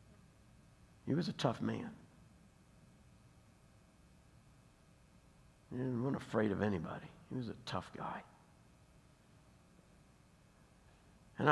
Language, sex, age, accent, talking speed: English, male, 60-79, American, 85 wpm